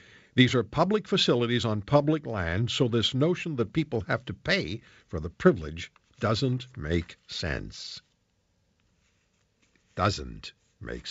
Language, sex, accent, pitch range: English, male, American, 95-140 Hz